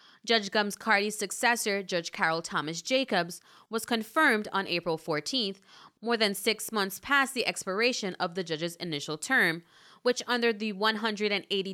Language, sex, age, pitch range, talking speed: English, female, 20-39, 180-235 Hz, 150 wpm